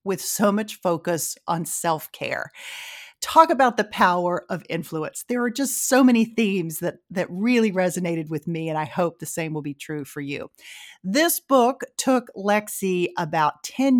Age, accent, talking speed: 40-59, American, 170 wpm